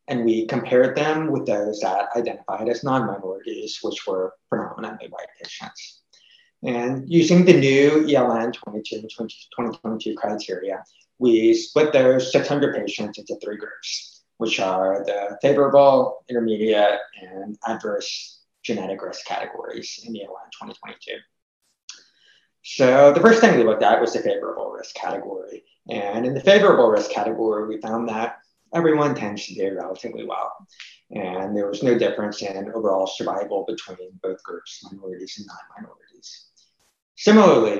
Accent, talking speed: American, 135 wpm